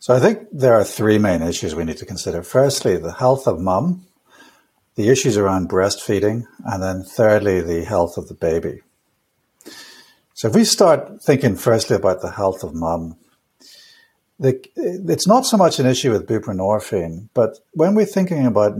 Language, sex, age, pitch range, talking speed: English, male, 60-79, 95-130 Hz, 170 wpm